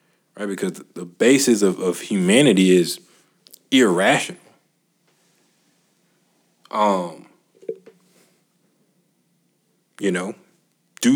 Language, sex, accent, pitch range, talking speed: English, male, American, 95-140 Hz, 70 wpm